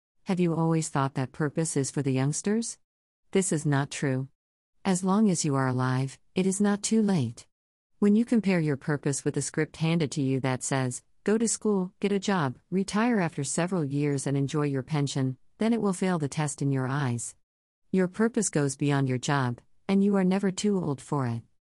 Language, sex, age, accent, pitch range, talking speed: English, female, 50-69, American, 135-180 Hz, 205 wpm